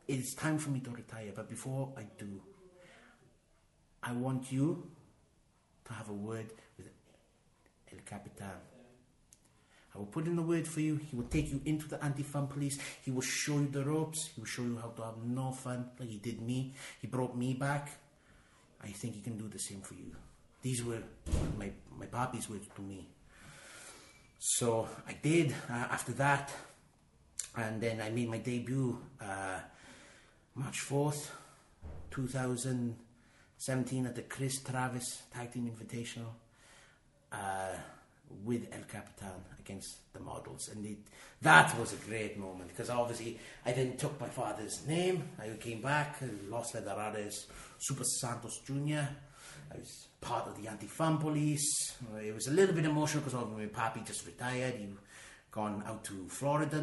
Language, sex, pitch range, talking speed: English, male, 110-140 Hz, 165 wpm